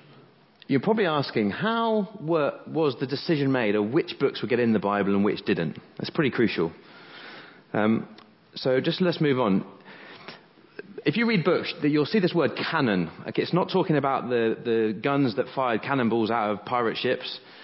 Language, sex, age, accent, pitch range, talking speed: English, male, 30-49, British, 105-155 Hz, 175 wpm